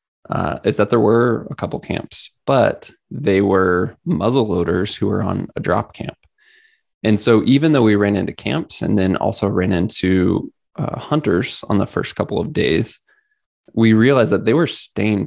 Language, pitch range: English, 95-120 Hz